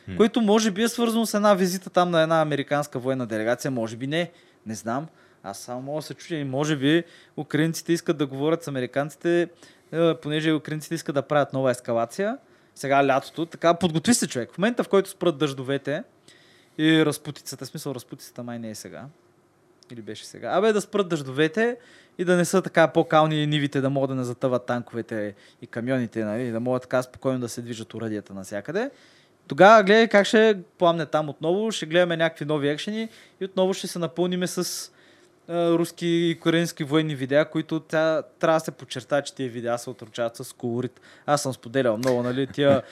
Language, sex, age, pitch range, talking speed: Bulgarian, male, 20-39, 130-175 Hz, 190 wpm